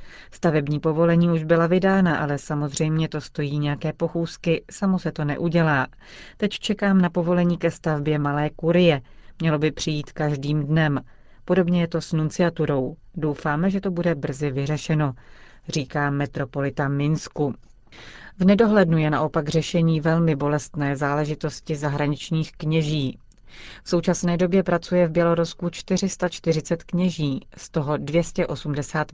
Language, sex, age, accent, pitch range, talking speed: Czech, female, 40-59, native, 150-170 Hz, 130 wpm